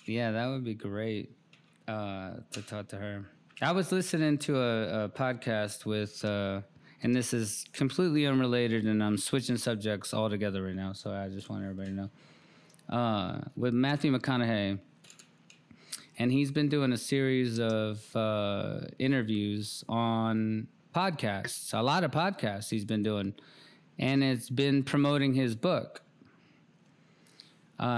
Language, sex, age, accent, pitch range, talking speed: English, male, 20-39, American, 110-130 Hz, 145 wpm